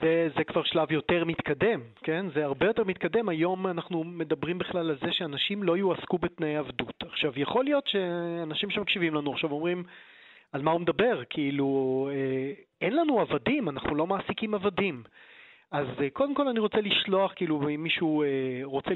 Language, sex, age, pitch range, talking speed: Hebrew, male, 30-49, 150-200 Hz, 165 wpm